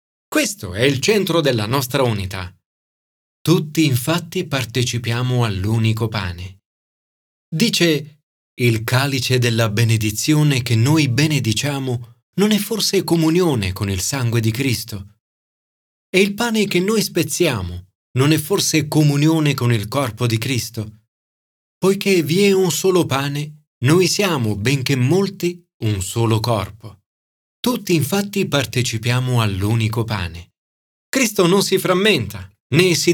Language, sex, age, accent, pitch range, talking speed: Italian, male, 40-59, native, 110-185 Hz, 125 wpm